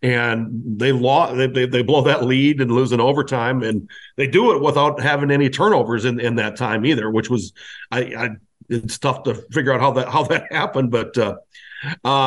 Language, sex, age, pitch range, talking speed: English, male, 50-69, 120-140 Hz, 205 wpm